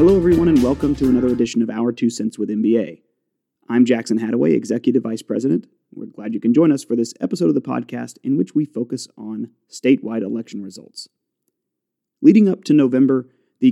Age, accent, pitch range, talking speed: 30-49, American, 120-165 Hz, 190 wpm